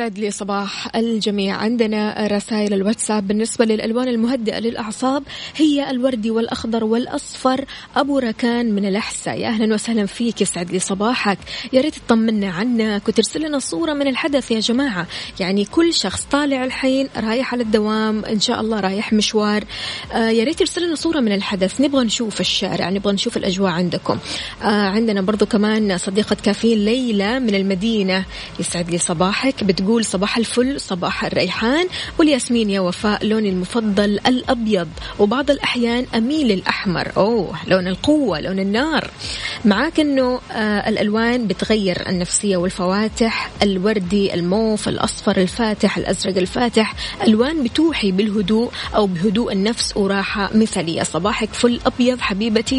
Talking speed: 135 wpm